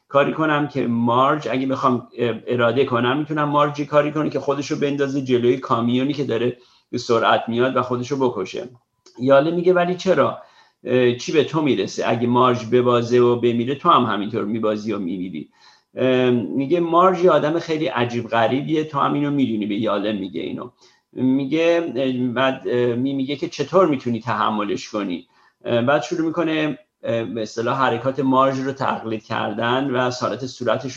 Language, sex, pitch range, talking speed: Persian, male, 120-145 Hz, 155 wpm